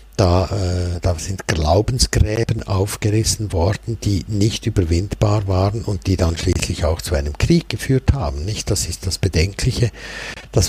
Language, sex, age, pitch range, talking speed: German, male, 60-79, 90-110 Hz, 150 wpm